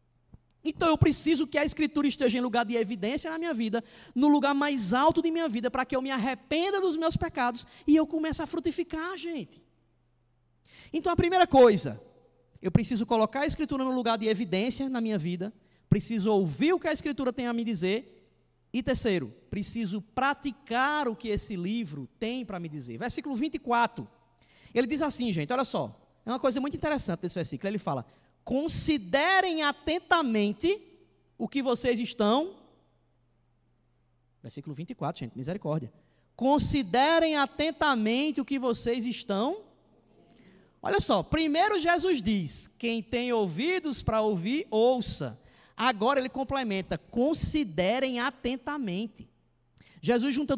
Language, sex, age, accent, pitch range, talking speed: Portuguese, male, 20-39, Brazilian, 180-285 Hz, 145 wpm